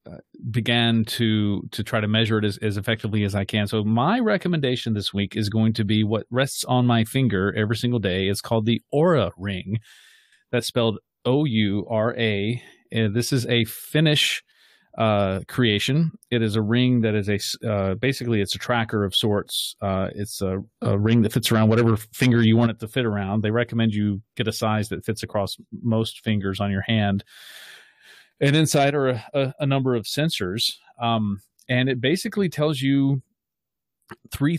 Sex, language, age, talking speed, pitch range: male, English, 30-49, 185 wpm, 105-120 Hz